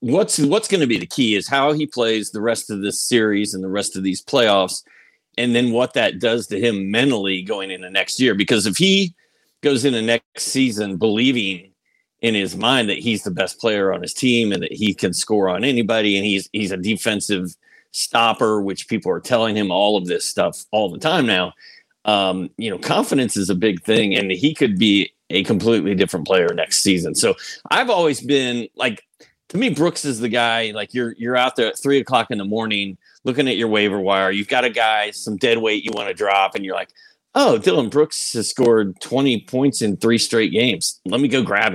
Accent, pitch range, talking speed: American, 100-130 Hz, 225 wpm